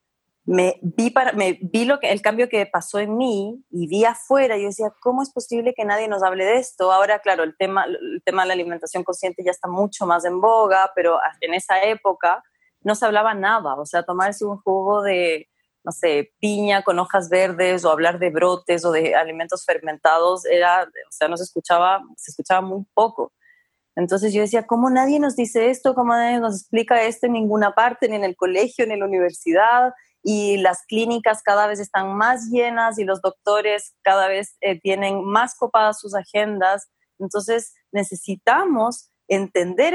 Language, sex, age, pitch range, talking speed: Spanish, female, 20-39, 185-235 Hz, 190 wpm